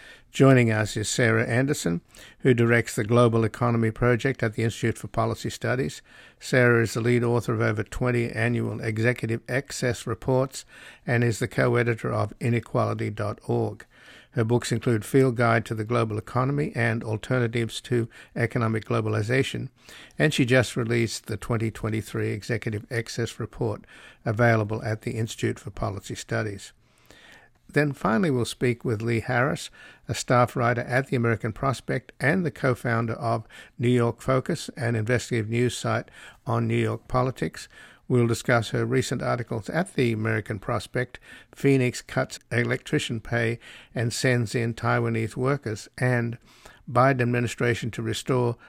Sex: male